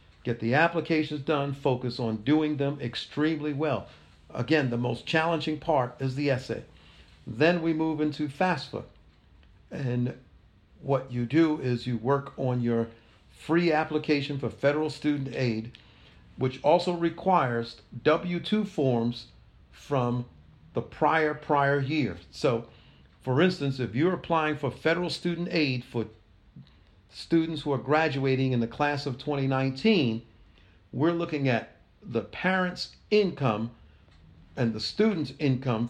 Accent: American